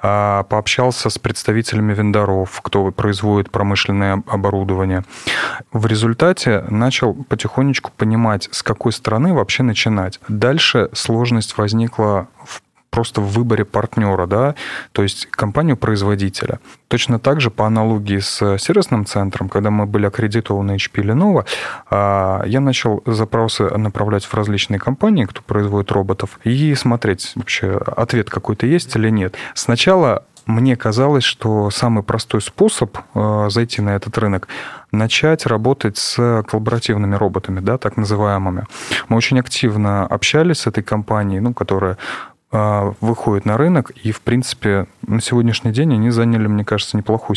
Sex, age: male, 30-49